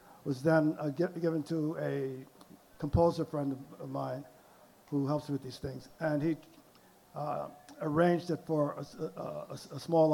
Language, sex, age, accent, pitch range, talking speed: English, male, 50-69, American, 145-165 Hz, 155 wpm